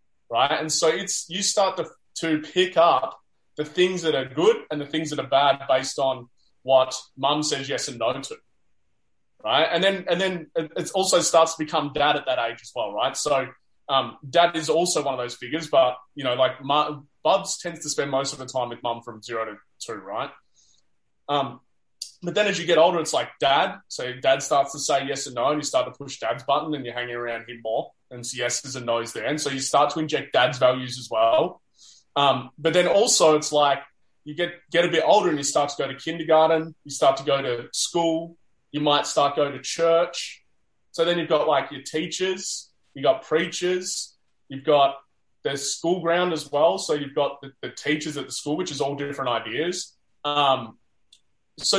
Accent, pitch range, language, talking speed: Australian, 135-170 Hz, English, 220 wpm